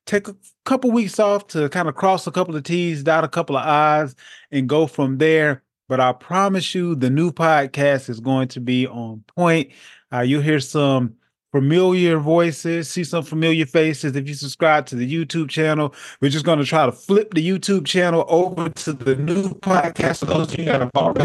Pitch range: 135-175 Hz